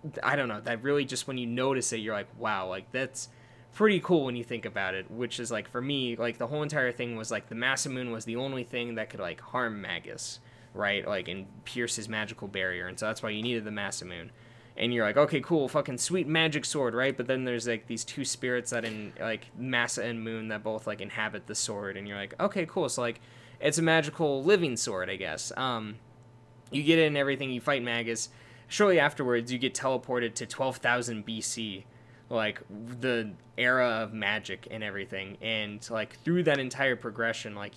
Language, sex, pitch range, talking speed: English, male, 110-130 Hz, 215 wpm